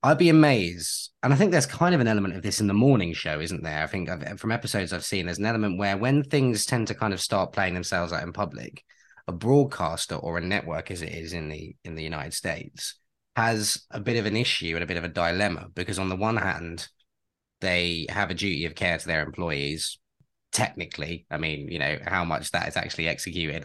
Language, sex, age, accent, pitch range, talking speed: English, male, 20-39, British, 85-105 Hz, 230 wpm